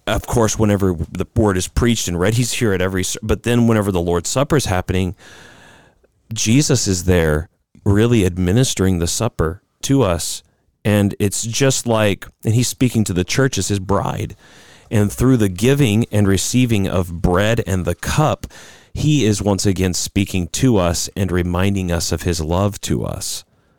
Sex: male